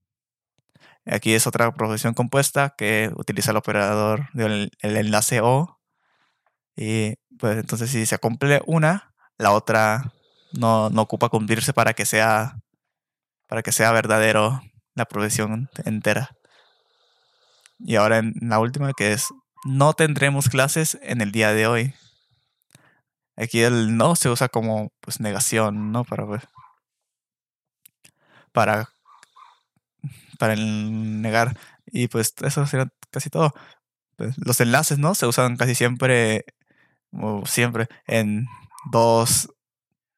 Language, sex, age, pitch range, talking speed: Spanish, male, 20-39, 110-130 Hz, 125 wpm